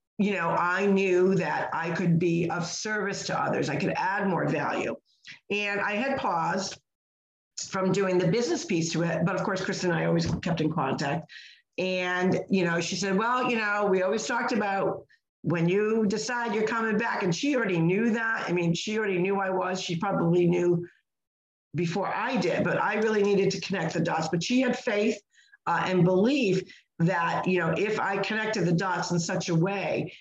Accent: American